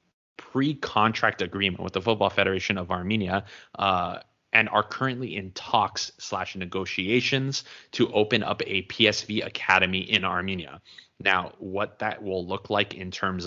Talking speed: 145 wpm